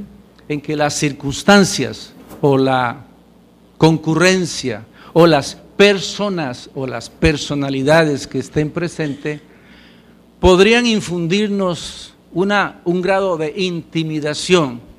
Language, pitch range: English, 130-185 Hz